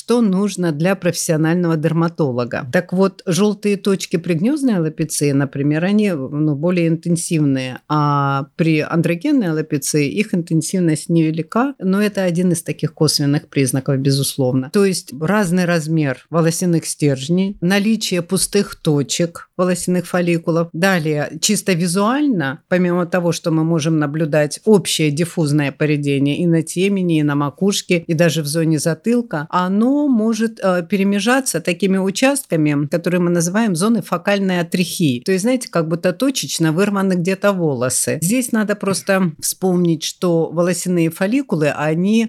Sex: female